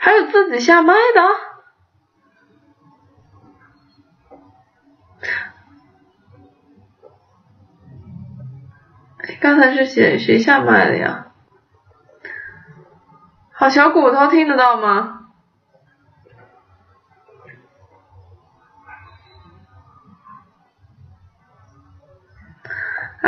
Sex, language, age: female, Chinese, 20-39